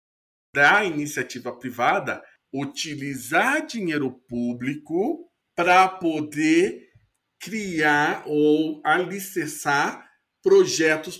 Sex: male